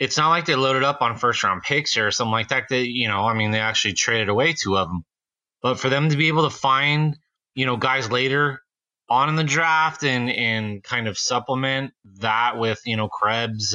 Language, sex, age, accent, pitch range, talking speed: English, male, 30-49, American, 105-135 Hz, 225 wpm